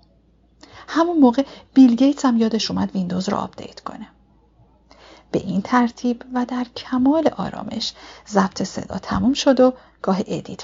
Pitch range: 190-250 Hz